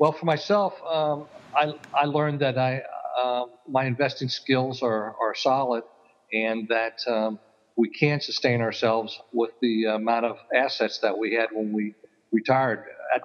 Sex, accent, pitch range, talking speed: male, American, 115-140 Hz, 160 wpm